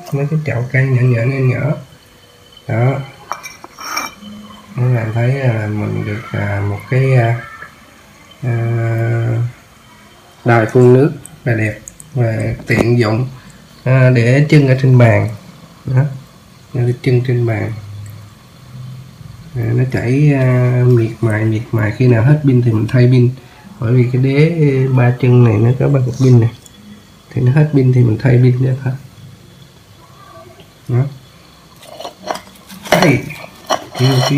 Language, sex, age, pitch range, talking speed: Vietnamese, male, 20-39, 115-130 Hz, 130 wpm